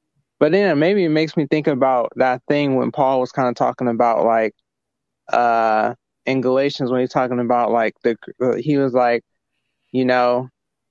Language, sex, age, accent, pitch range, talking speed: English, male, 20-39, American, 120-140 Hz, 175 wpm